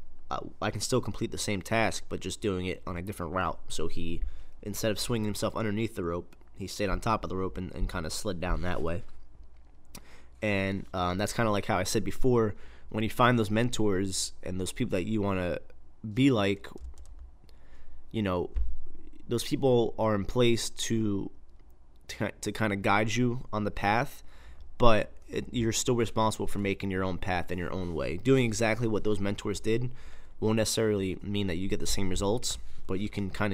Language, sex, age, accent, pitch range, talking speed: English, male, 20-39, American, 70-105 Hz, 195 wpm